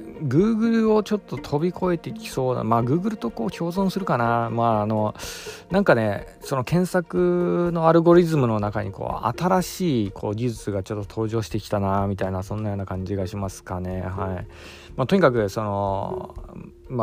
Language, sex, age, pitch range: Japanese, male, 20-39, 100-140 Hz